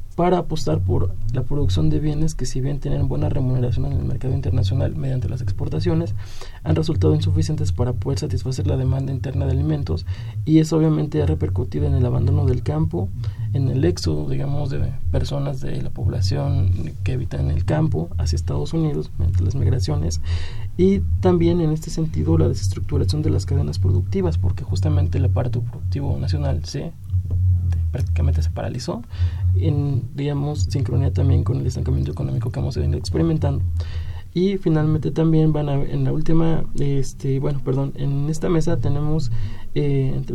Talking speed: 165 wpm